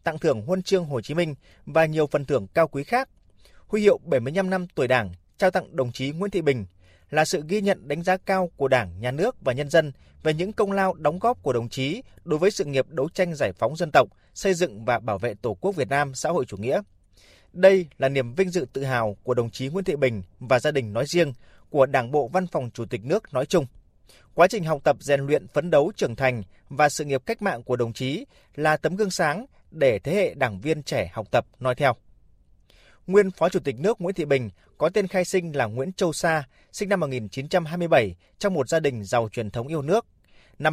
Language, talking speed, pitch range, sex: Vietnamese, 240 wpm, 125-180 Hz, male